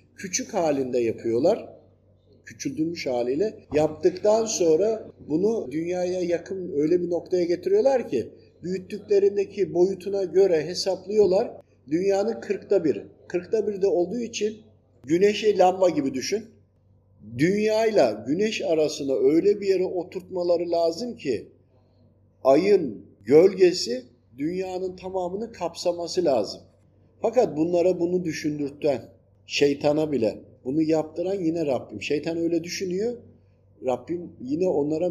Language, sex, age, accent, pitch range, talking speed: Turkish, male, 50-69, native, 135-195 Hz, 110 wpm